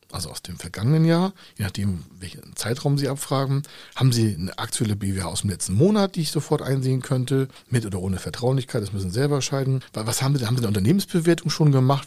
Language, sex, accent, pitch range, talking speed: German, male, German, 95-135 Hz, 215 wpm